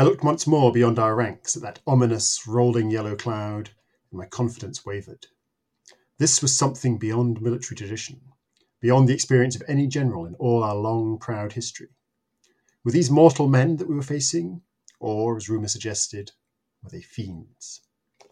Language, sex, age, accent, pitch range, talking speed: English, male, 40-59, British, 110-135 Hz, 165 wpm